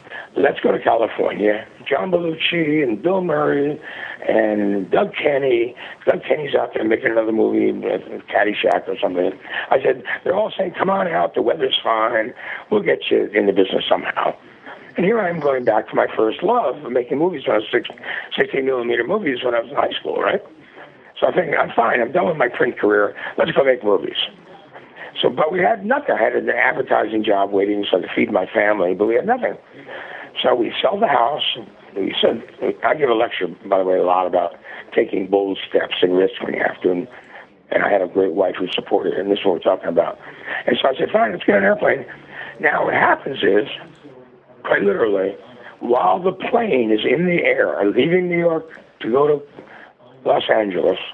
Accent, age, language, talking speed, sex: American, 60-79, English, 200 wpm, male